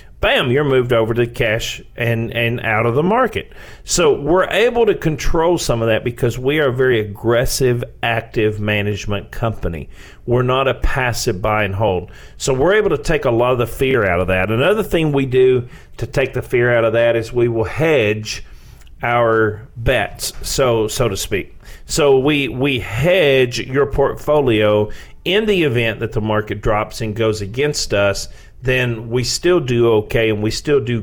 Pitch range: 110-130 Hz